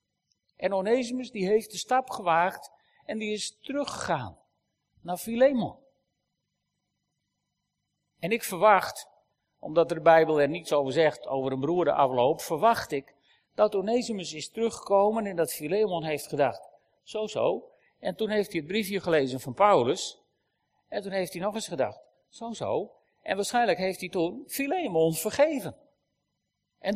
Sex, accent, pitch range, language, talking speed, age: male, Dutch, 155-215 Hz, Dutch, 145 wpm, 50-69